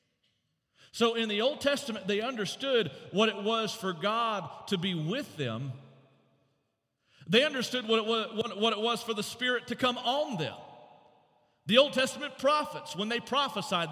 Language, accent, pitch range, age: English, American, 190-245 Hz, 40-59